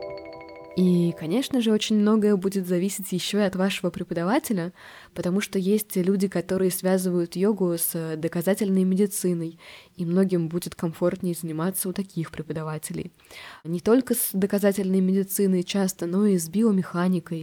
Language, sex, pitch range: Russian, female, 170-195 Hz